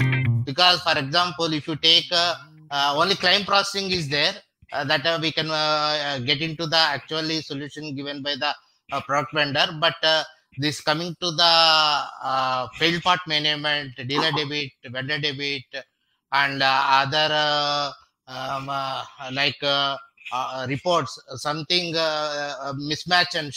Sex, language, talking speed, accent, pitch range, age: male, English, 155 wpm, Indian, 140-165 Hz, 20-39